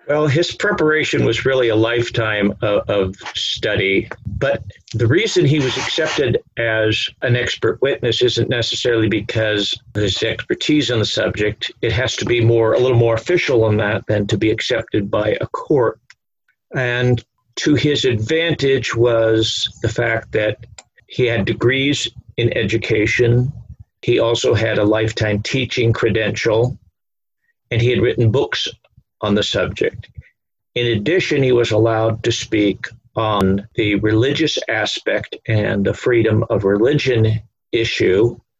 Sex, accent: male, American